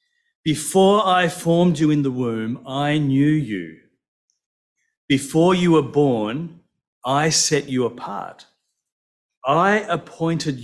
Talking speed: 115 wpm